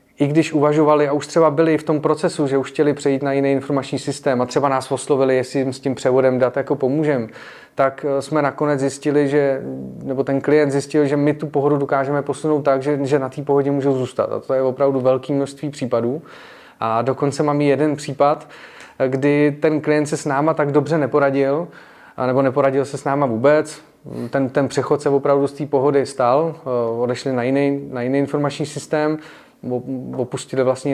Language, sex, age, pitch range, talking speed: Czech, male, 30-49, 135-145 Hz, 190 wpm